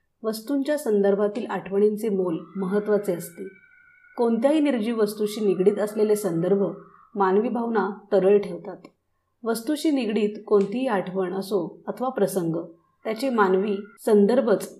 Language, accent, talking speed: Marathi, native, 105 wpm